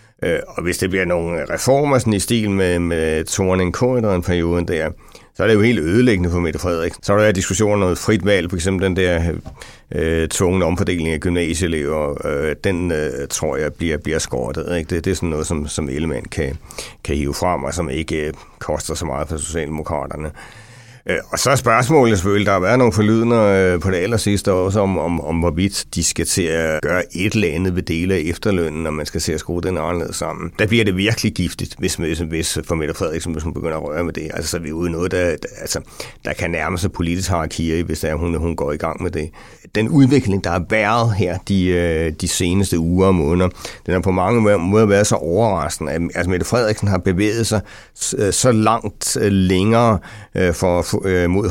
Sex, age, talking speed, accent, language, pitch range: male, 60-79, 210 wpm, Danish, English, 85-105 Hz